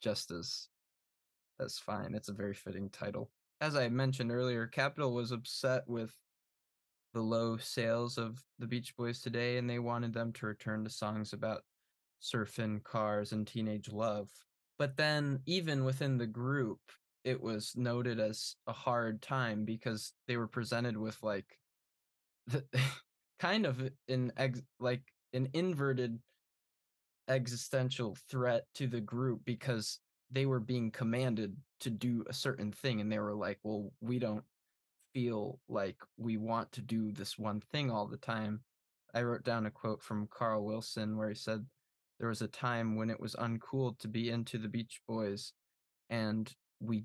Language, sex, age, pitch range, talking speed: English, male, 10-29, 110-125 Hz, 160 wpm